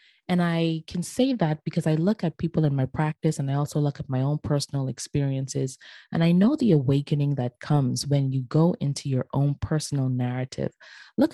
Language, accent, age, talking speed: English, American, 20-39, 200 wpm